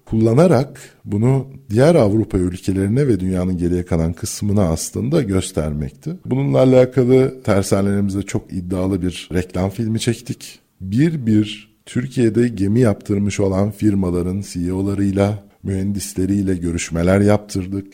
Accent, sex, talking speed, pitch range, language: native, male, 105 wpm, 95-120 Hz, Turkish